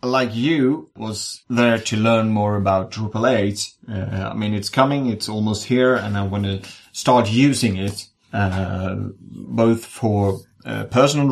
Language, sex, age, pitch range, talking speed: Swedish, male, 30-49, 100-120 Hz, 160 wpm